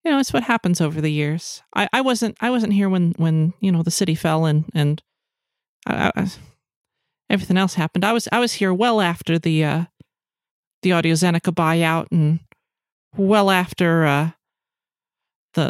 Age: 30-49